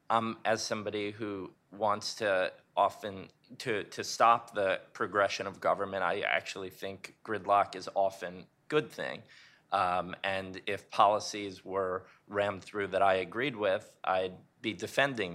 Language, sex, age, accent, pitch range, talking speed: English, male, 20-39, American, 95-115 Hz, 140 wpm